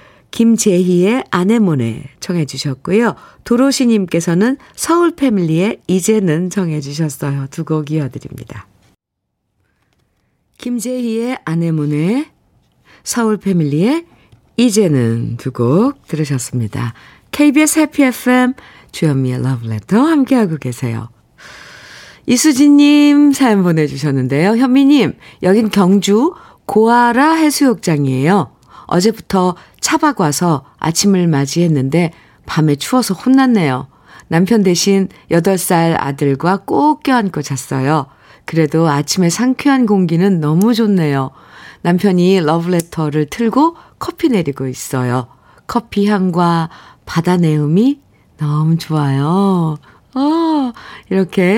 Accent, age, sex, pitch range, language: native, 50-69, female, 155-240 Hz, Korean